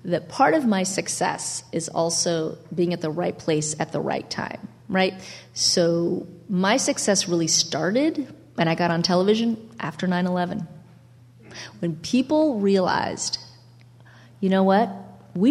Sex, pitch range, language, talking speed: female, 160-200 Hz, English, 140 wpm